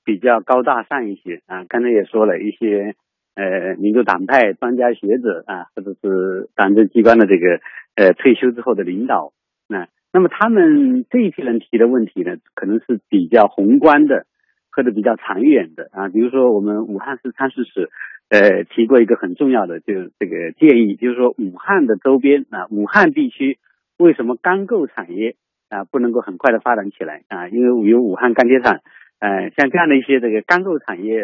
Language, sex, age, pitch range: Chinese, male, 50-69, 115-165 Hz